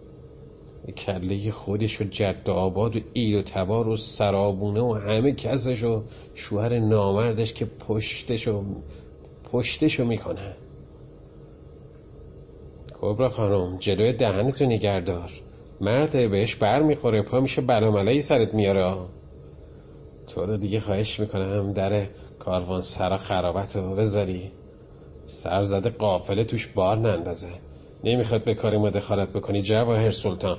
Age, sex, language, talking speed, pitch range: 40-59, male, Persian, 120 wpm, 95-125 Hz